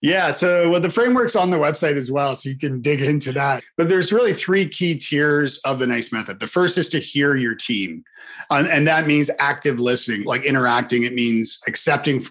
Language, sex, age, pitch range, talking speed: English, male, 40-59, 120-150 Hz, 210 wpm